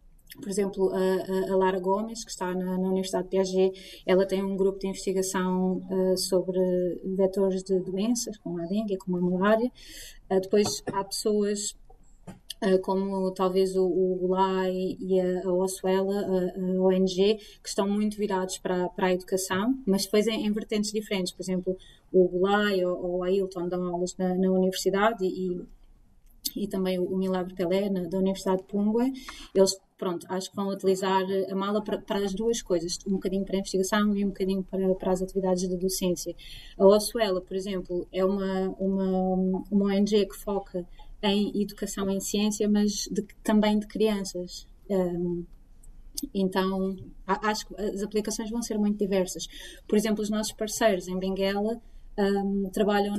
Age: 20-39